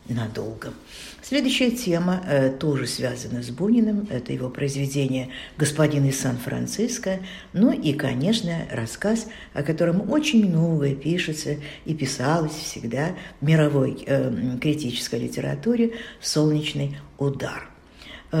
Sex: female